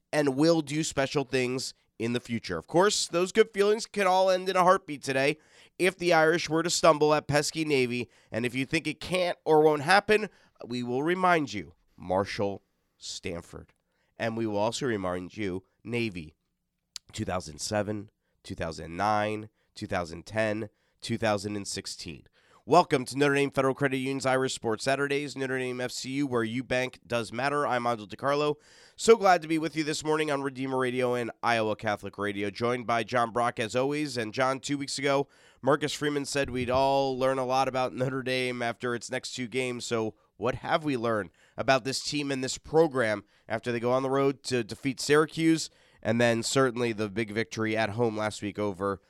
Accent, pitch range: American, 110-145 Hz